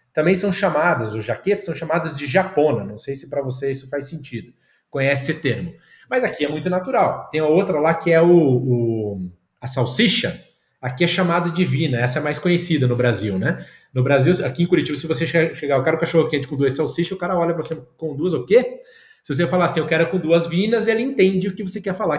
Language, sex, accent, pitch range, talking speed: Portuguese, male, Brazilian, 145-190 Hz, 240 wpm